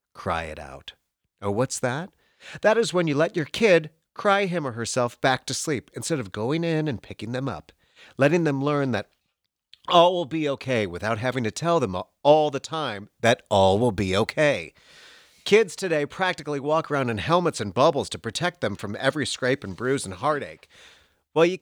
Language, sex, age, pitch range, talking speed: English, male, 40-59, 110-155 Hz, 195 wpm